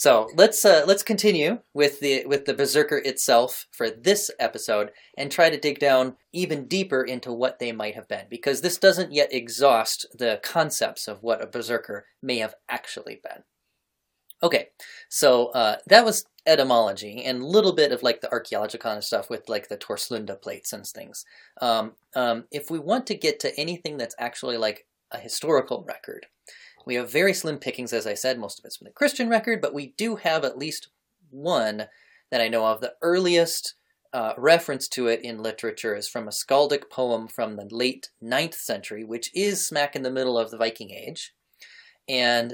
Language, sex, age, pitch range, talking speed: English, male, 30-49, 120-190 Hz, 190 wpm